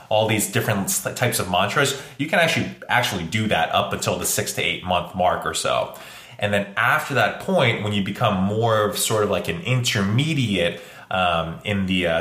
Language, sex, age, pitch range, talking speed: English, male, 20-39, 100-125 Hz, 200 wpm